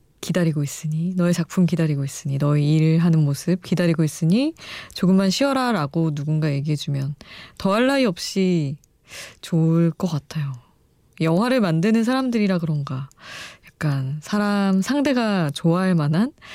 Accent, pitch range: native, 150-200 Hz